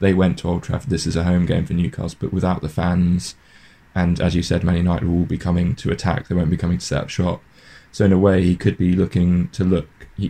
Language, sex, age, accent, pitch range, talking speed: English, male, 10-29, British, 85-95 Hz, 270 wpm